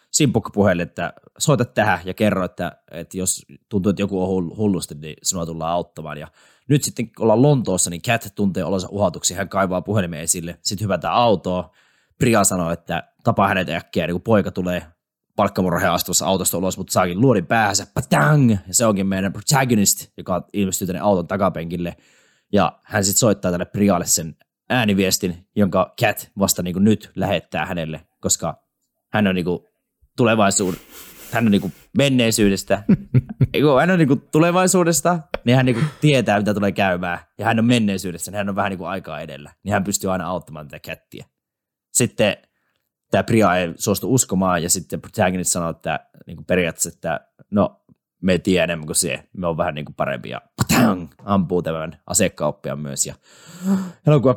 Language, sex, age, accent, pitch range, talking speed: Finnish, male, 20-39, native, 90-110 Hz, 170 wpm